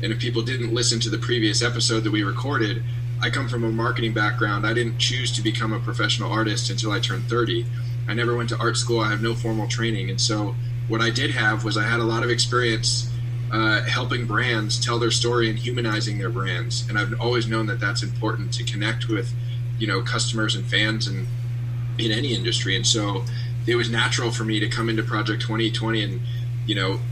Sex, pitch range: male, 115-120 Hz